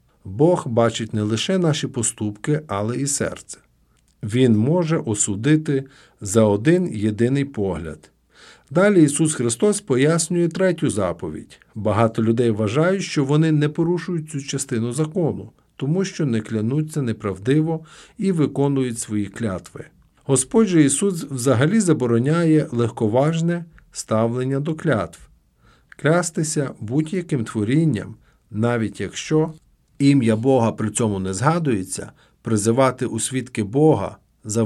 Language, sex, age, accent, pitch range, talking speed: Ukrainian, male, 50-69, native, 110-155 Hz, 115 wpm